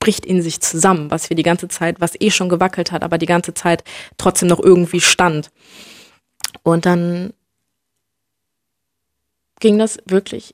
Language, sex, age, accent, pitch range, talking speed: German, female, 20-39, German, 165-190 Hz, 155 wpm